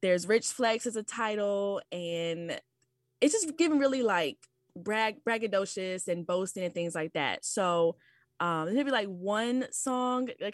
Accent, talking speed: American, 165 wpm